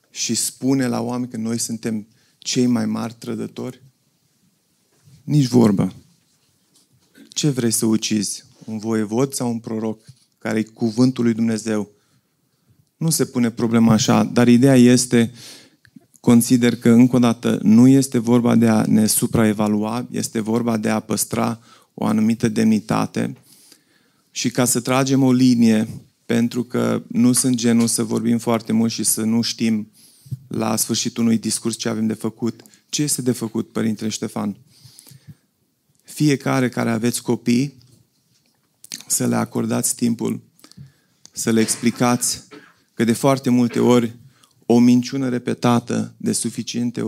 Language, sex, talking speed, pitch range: Romanian, male, 140 wpm, 115-130 Hz